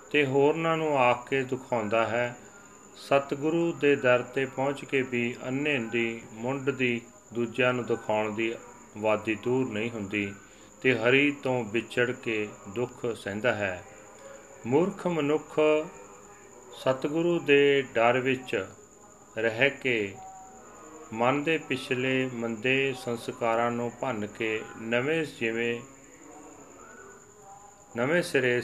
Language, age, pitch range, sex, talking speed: Punjabi, 40-59, 110-135 Hz, male, 90 wpm